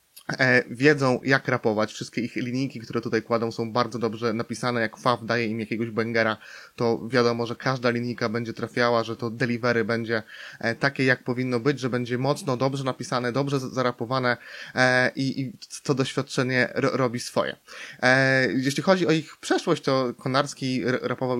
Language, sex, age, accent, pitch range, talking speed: Polish, male, 20-39, native, 115-130 Hz, 150 wpm